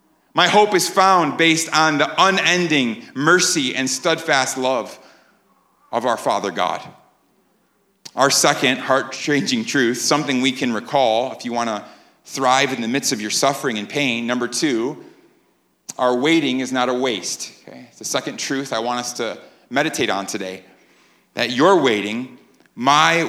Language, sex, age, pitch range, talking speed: English, male, 30-49, 125-170 Hz, 155 wpm